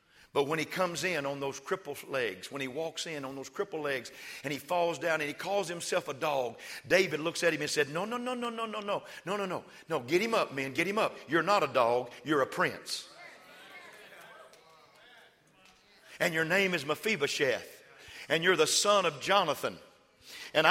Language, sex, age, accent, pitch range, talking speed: English, male, 50-69, American, 170-245 Hz, 205 wpm